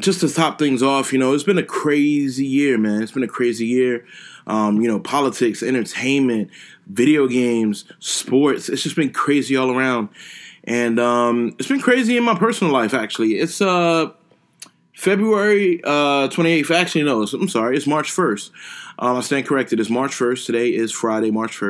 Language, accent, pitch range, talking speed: English, American, 110-155 Hz, 180 wpm